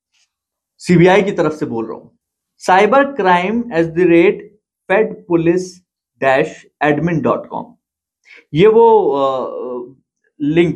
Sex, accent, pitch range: male, native, 140-195 Hz